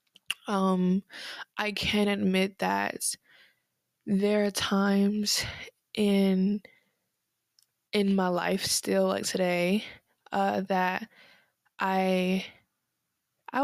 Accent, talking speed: American, 85 wpm